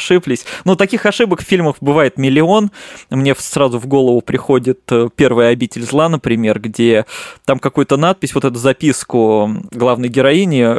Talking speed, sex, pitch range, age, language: 150 wpm, male, 125-155 Hz, 20-39, Russian